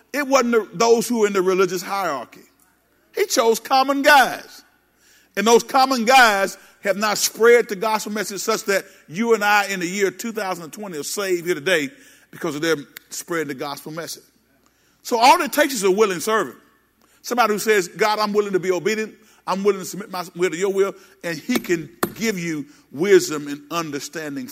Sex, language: male, English